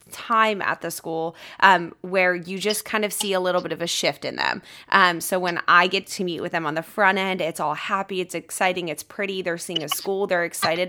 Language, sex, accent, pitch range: English, female, American, 170-205 Hz